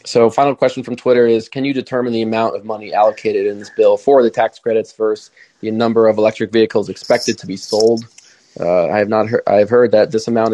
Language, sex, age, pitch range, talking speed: English, male, 20-39, 110-135 Hz, 240 wpm